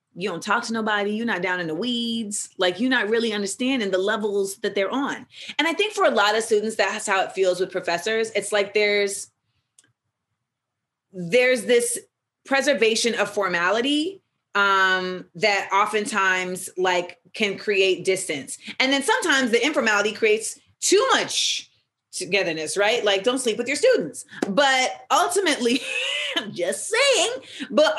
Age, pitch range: 30-49, 185-240 Hz